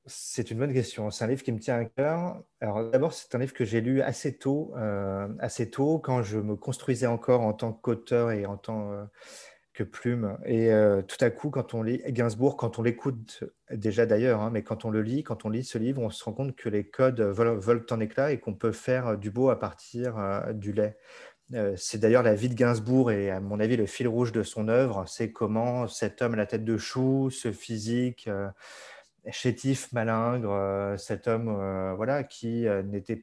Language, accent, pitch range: French, French, 105-125 Hz